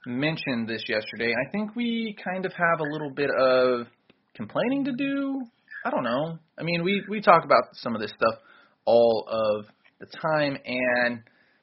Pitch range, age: 120-155 Hz, 20-39